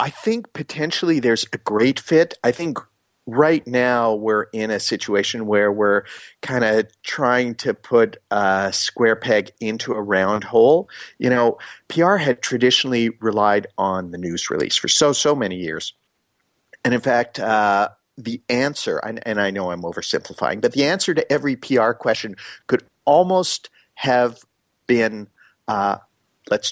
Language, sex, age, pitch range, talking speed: English, male, 50-69, 110-145 Hz, 160 wpm